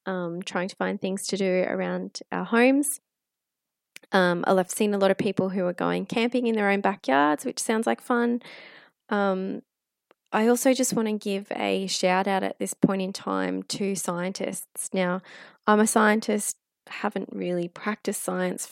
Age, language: 20-39, English